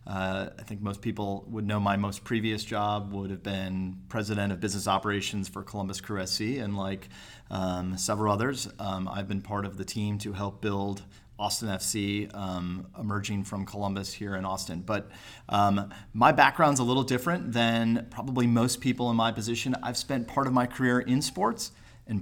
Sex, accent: male, American